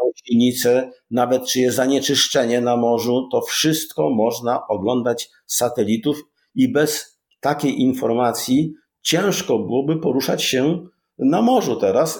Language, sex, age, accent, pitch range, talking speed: Polish, male, 50-69, native, 120-160 Hz, 115 wpm